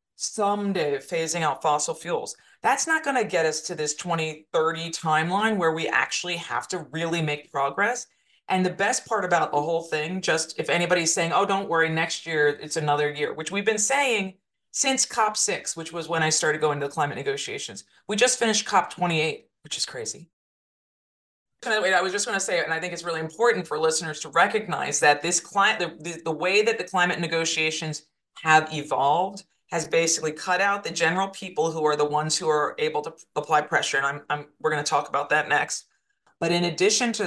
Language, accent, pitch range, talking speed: English, American, 155-195 Hz, 205 wpm